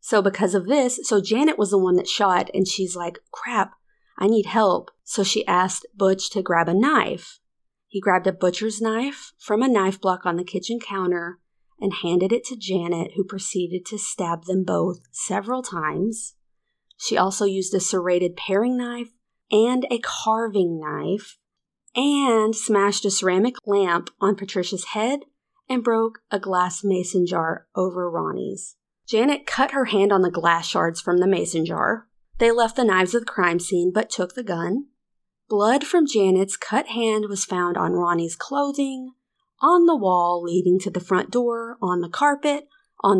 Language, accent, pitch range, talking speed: English, American, 185-240 Hz, 175 wpm